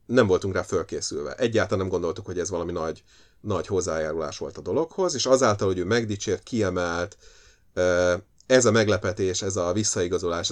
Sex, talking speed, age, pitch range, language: male, 160 wpm, 30-49, 95-125 Hz, Hungarian